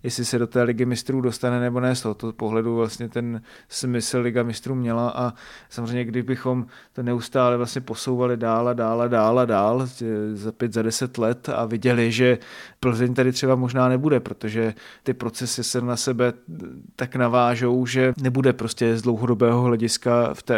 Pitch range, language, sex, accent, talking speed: 115-125 Hz, Czech, male, native, 175 wpm